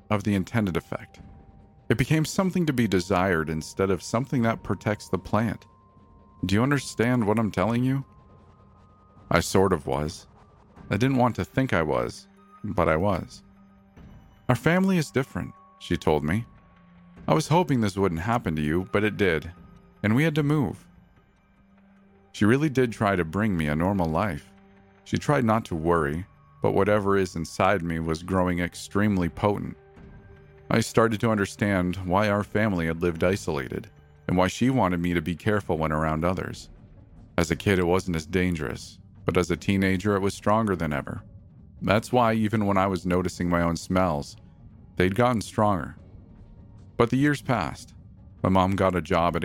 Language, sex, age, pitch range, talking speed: English, male, 40-59, 85-110 Hz, 175 wpm